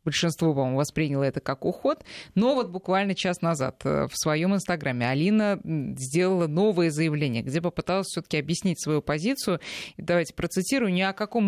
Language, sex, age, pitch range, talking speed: Russian, female, 20-39, 155-200 Hz, 150 wpm